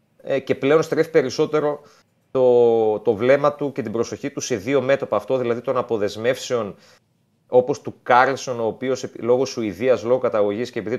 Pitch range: 115-145 Hz